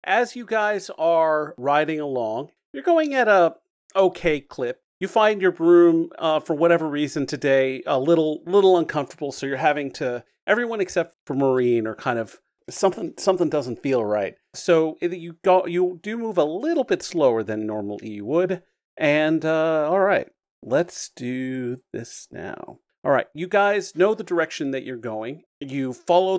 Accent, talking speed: American, 170 wpm